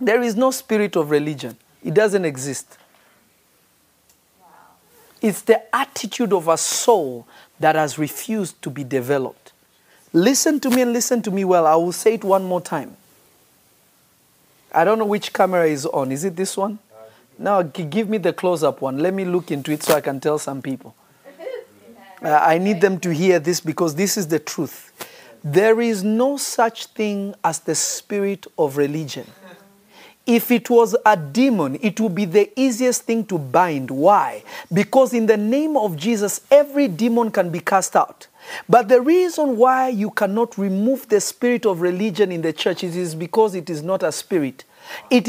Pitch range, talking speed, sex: 170-235 Hz, 175 wpm, male